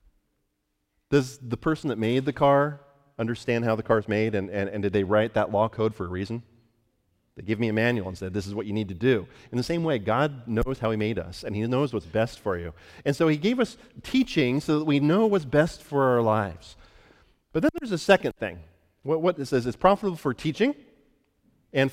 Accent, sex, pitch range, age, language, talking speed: American, male, 100-145 Hz, 40-59, English, 235 wpm